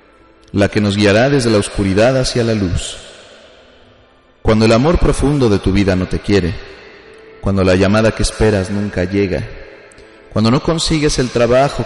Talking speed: 160 wpm